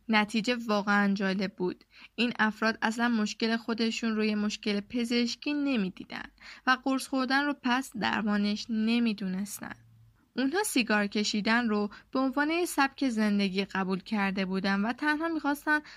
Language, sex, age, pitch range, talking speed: Persian, female, 10-29, 210-265 Hz, 135 wpm